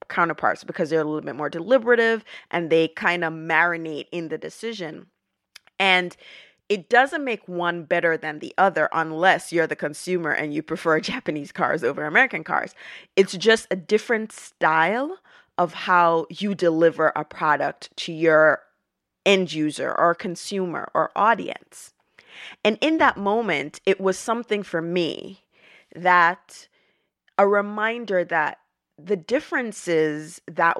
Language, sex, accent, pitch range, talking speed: English, female, American, 165-215 Hz, 140 wpm